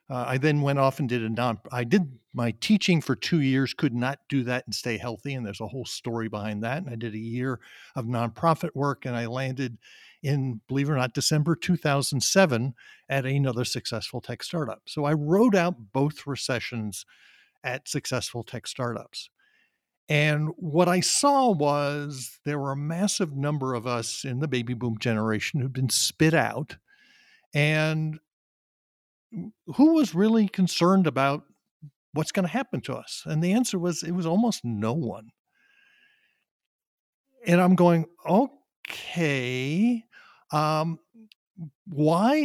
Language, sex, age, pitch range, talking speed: English, male, 50-69, 125-185 Hz, 155 wpm